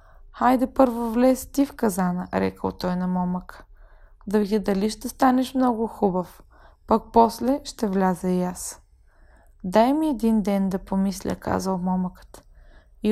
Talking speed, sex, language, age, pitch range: 145 wpm, female, Bulgarian, 20-39, 190-230 Hz